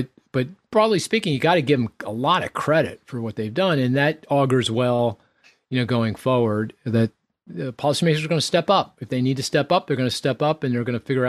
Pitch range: 120-165 Hz